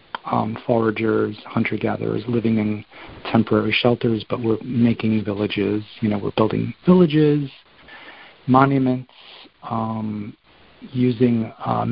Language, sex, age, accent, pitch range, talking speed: English, male, 40-59, American, 110-130 Hz, 100 wpm